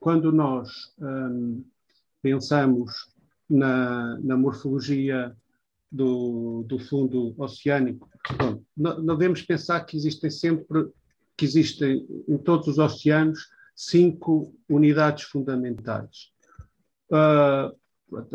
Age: 50-69